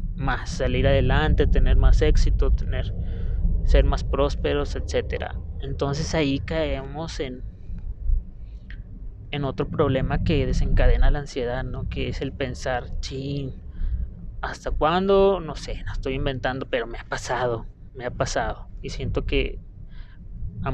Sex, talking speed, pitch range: male, 135 wpm, 115-155 Hz